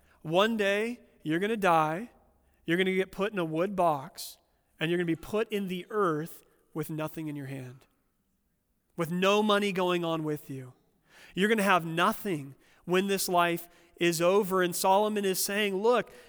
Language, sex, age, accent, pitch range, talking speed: English, male, 40-59, American, 160-200 Hz, 190 wpm